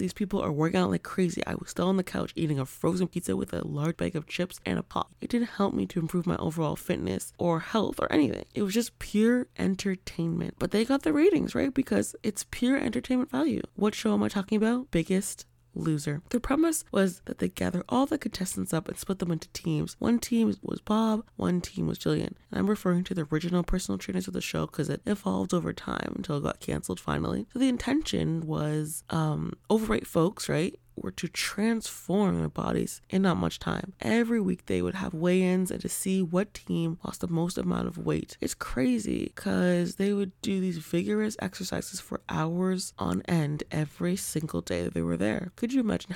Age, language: 20-39, English